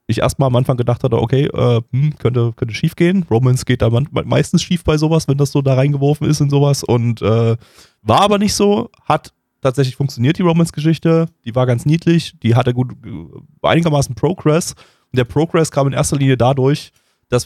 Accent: German